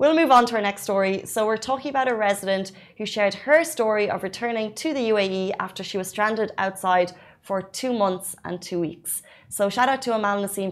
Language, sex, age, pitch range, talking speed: Arabic, female, 20-39, 180-205 Hz, 220 wpm